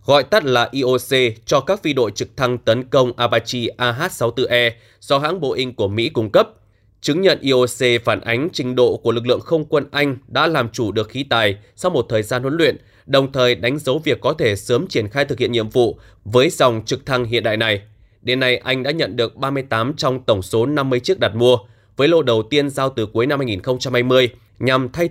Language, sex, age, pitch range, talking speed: Vietnamese, male, 20-39, 115-135 Hz, 220 wpm